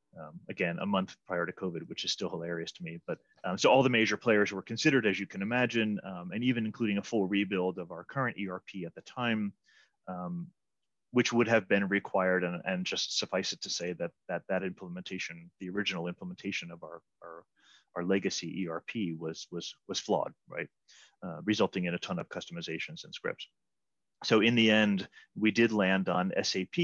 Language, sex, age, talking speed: English, male, 30-49, 200 wpm